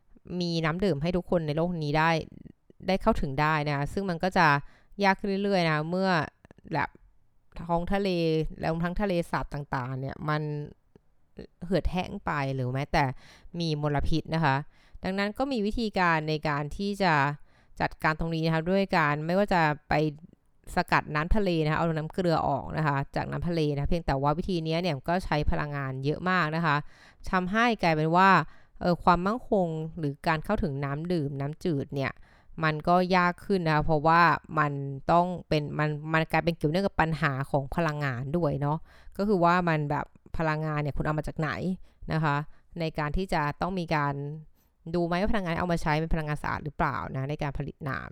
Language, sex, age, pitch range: Thai, female, 20-39, 150-180 Hz